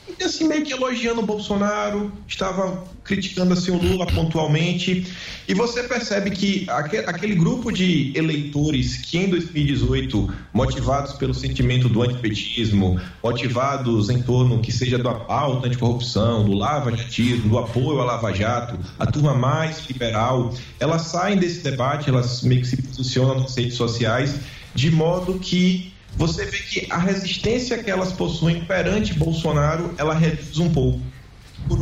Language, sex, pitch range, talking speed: English, male, 125-175 Hz, 145 wpm